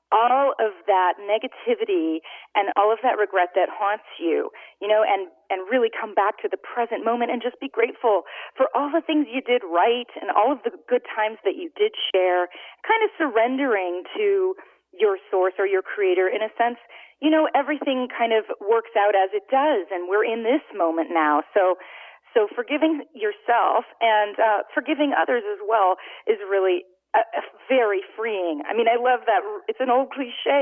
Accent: American